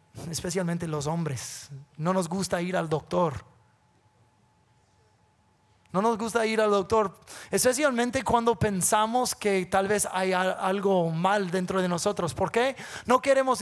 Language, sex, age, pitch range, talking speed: English, male, 30-49, 125-200 Hz, 135 wpm